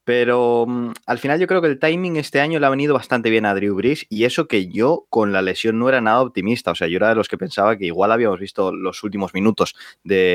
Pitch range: 105-135 Hz